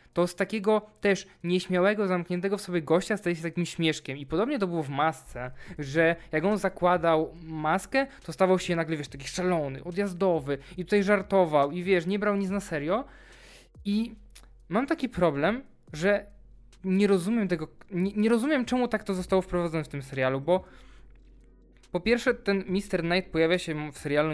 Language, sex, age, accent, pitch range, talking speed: Polish, male, 20-39, native, 150-205 Hz, 175 wpm